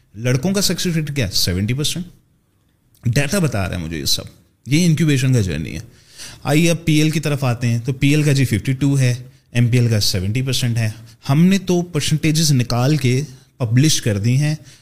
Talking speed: 180 wpm